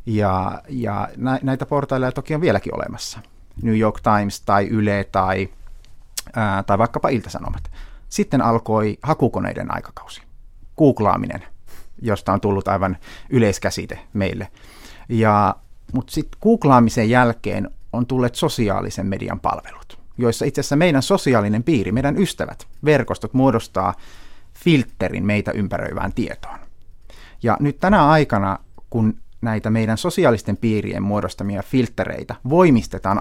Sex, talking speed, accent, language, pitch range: male, 115 wpm, native, Finnish, 100-130 Hz